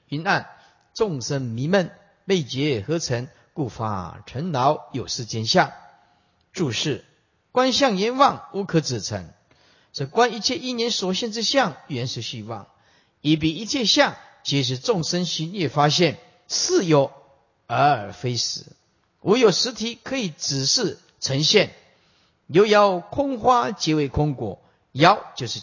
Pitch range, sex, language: 135-220 Hz, male, Chinese